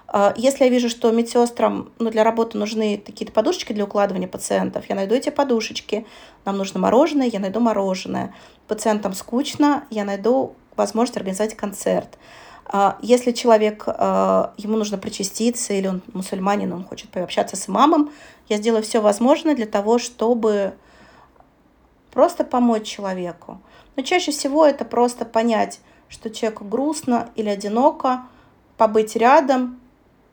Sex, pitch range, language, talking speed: female, 205-245 Hz, Russian, 135 wpm